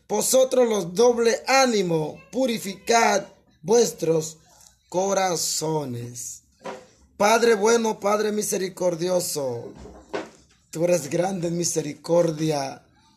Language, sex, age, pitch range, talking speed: Spanish, male, 30-49, 160-230 Hz, 75 wpm